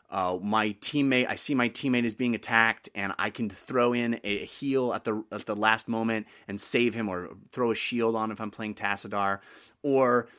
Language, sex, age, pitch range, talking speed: English, male, 30-49, 110-140 Hz, 215 wpm